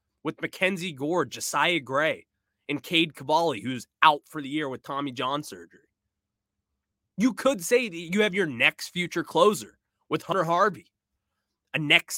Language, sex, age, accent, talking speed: English, male, 20-39, American, 160 wpm